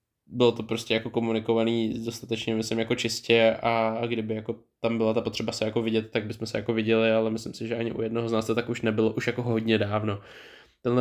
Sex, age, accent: male, 20-39, native